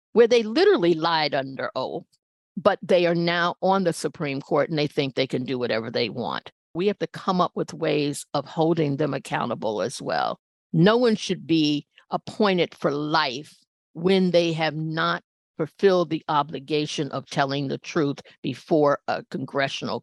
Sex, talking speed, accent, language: female, 170 wpm, American, English